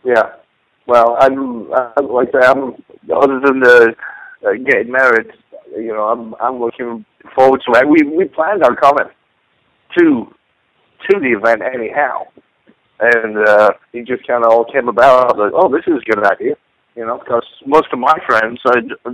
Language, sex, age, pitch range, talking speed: English, male, 50-69, 115-145 Hz, 170 wpm